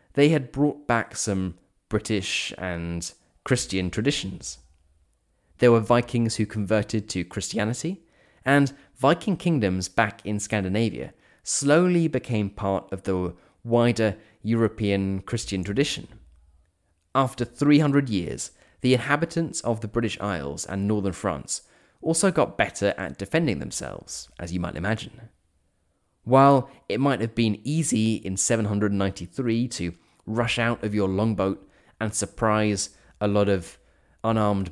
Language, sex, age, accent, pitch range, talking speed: English, male, 20-39, British, 95-125 Hz, 125 wpm